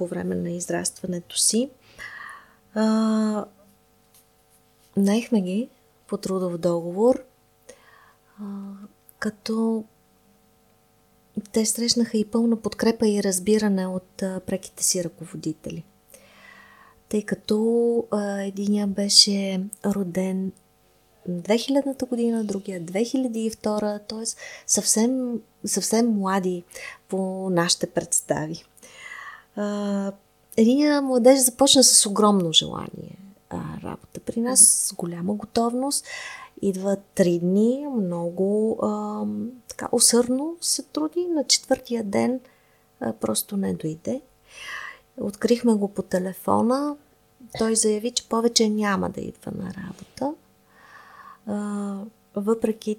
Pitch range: 185-230 Hz